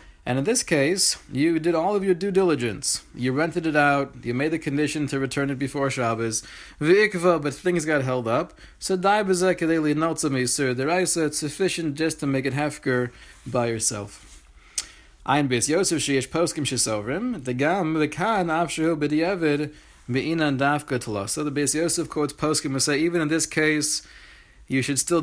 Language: English